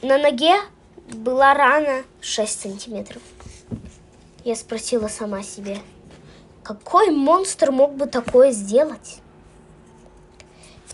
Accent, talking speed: native, 95 wpm